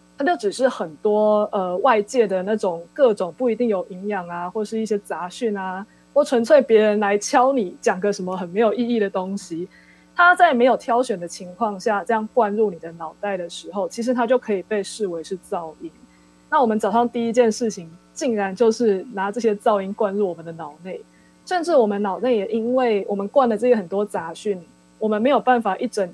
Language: Chinese